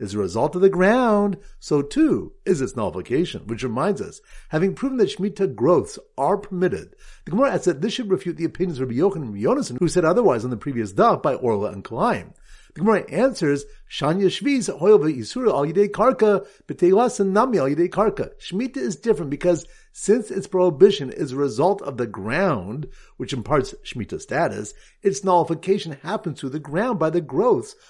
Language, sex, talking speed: English, male, 185 wpm